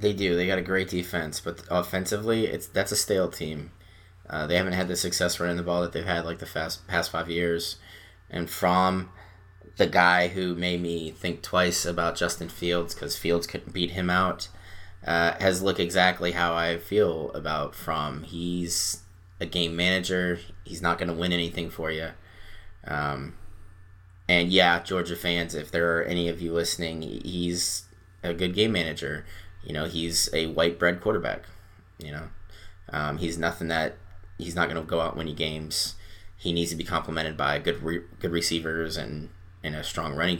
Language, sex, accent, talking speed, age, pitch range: English, male, American, 185 wpm, 20-39, 85-95 Hz